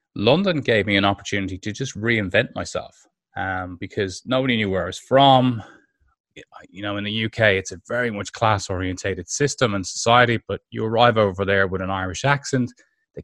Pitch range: 95-125 Hz